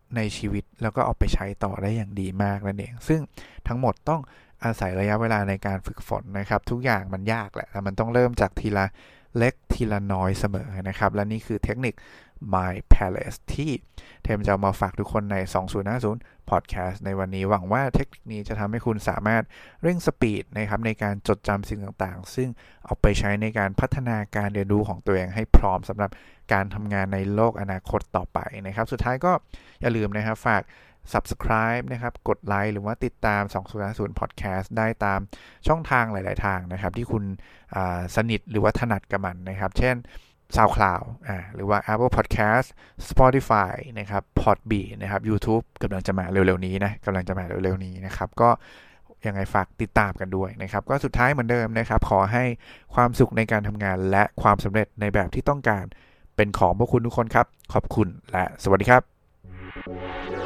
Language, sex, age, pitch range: English, male, 20-39, 95-115 Hz